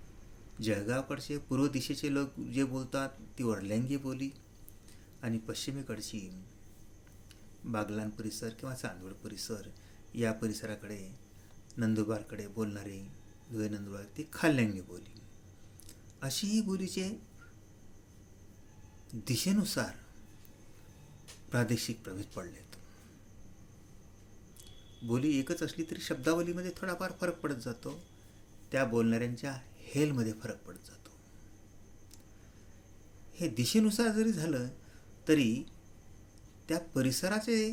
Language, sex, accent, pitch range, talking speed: Marathi, male, native, 105-135 Hz, 75 wpm